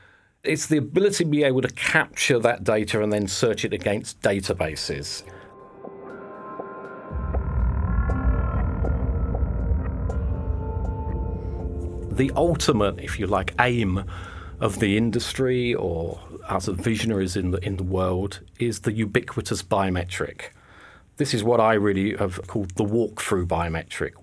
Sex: male